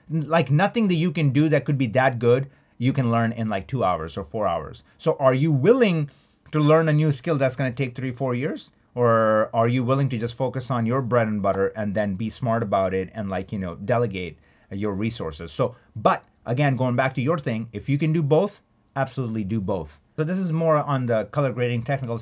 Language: English